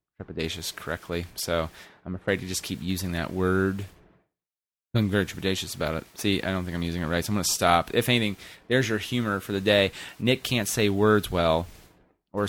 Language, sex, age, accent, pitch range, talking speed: English, male, 30-49, American, 90-115 Hz, 195 wpm